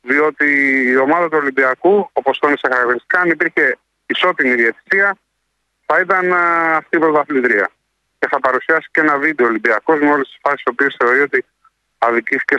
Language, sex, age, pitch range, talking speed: Greek, male, 30-49, 135-165 Hz, 160 wpm